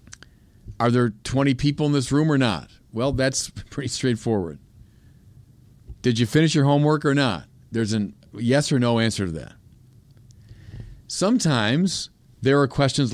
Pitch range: 105-140 Hz